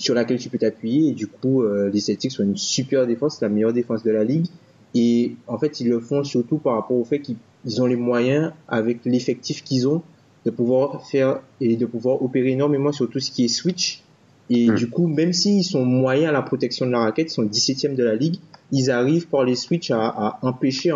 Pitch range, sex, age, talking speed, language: 115-145 Hz, male, 20-39, 240 wpm, French